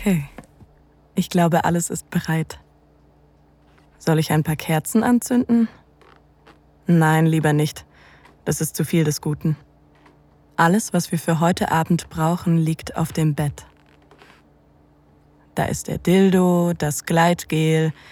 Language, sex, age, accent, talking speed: German, female, 20-39, German, 125 wpm